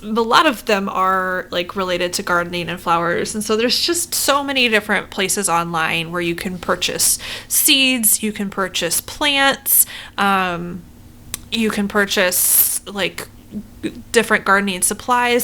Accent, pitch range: American, 185-245 Hz